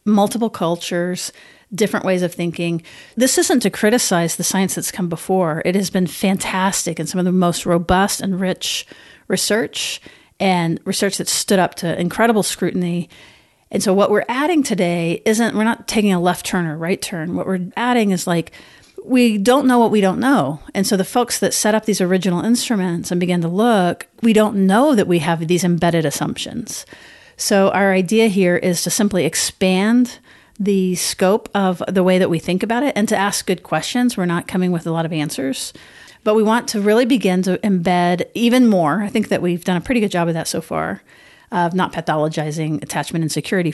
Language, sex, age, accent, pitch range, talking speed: English, female, 40-59, American, 175-215 Hz, 200 wpm